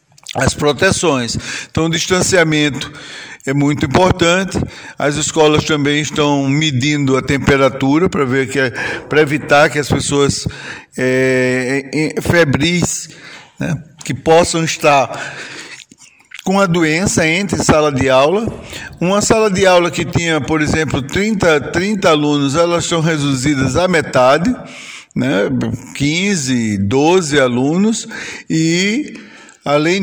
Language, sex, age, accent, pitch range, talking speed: Portuguese, male, 60-79, Brazilian, 135-170 Hz, 120 wpm